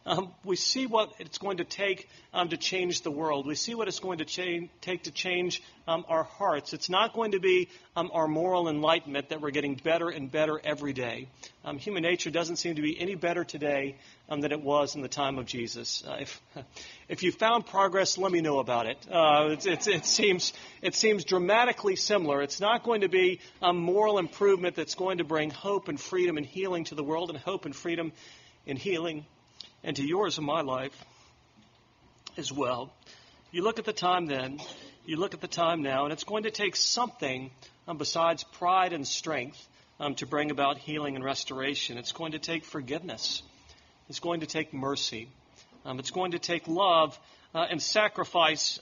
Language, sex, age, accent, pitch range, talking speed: English, male, 40-59, American, 150-185 Hz, 200 wpm